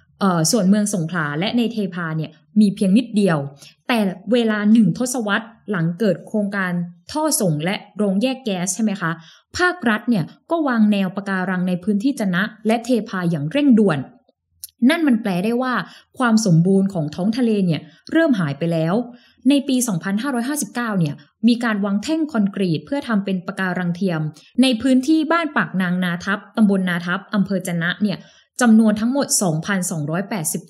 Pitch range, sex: 175-240 Hz, female